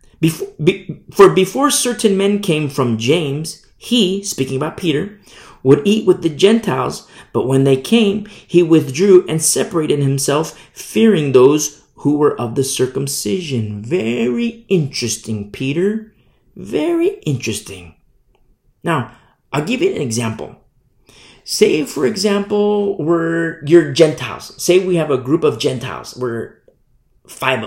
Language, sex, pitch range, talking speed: English, male, 120-185 Hz, 125 wpm